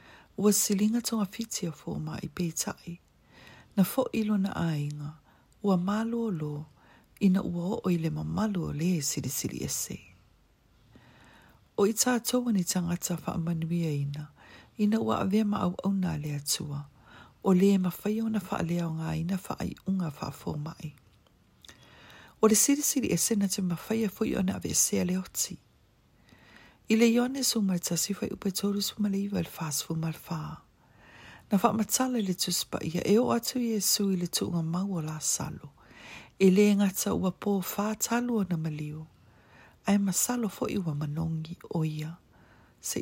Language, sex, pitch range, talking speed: English, female, 160-210 Hz, 150 wpm